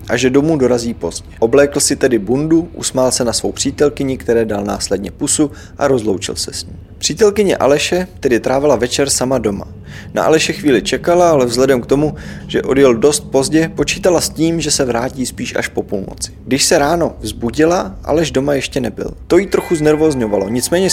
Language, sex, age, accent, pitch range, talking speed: Czech, male, 20-39, native, 110-155 Hz, 185 wpm